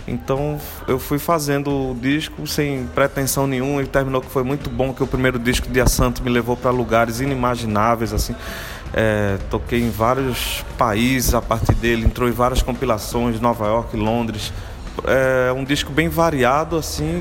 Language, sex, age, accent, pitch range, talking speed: Portuguese, male, 20-39, Brazilian, 120-150 Hz, 165 wpm